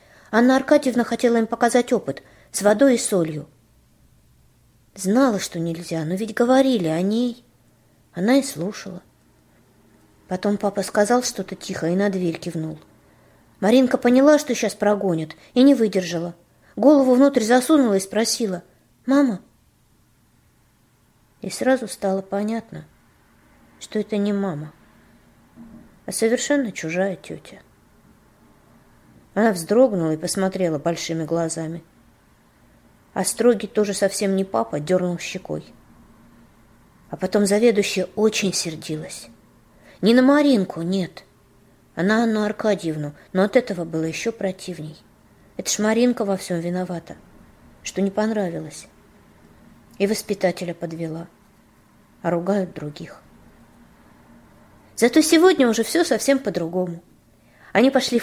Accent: native